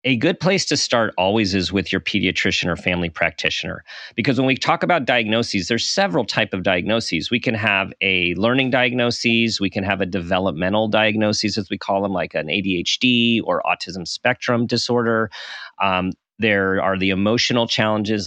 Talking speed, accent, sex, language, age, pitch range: 175 wpm, American, male, English, 40-59, 95-115 Hz